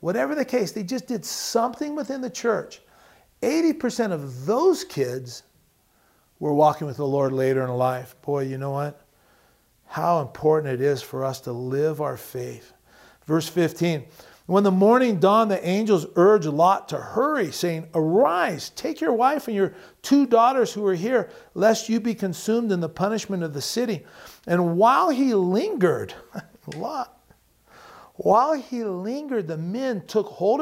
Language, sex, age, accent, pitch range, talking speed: English, male, 50-69, American, 160-245 Hz, 160 wpm